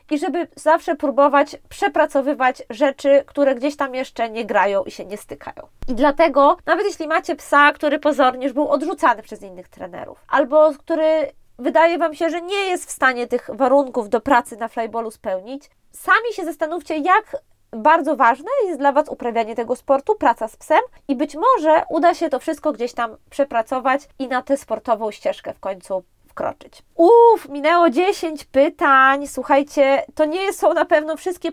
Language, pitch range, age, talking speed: Polish, 250-315 Hz, 20-39, 170 wpm